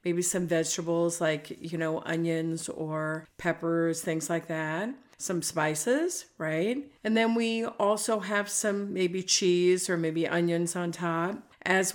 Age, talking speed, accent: 50-69, 145 wpm, American